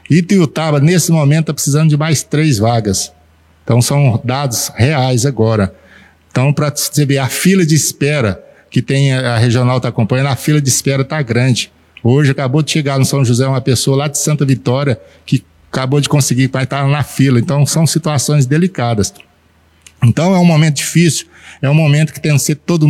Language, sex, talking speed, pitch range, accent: Portuguese, male, 200 wpm, 125-155 Hz, Brazilian